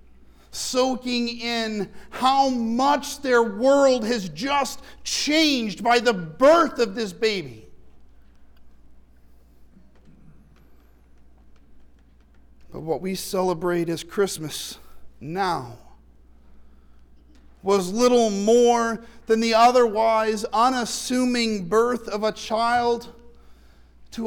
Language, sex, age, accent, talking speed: English, male, 50-69, American, 85 wpm